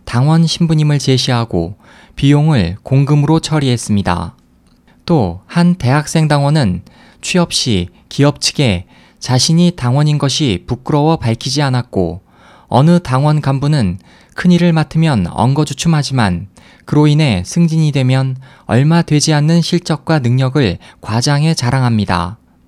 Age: 20-39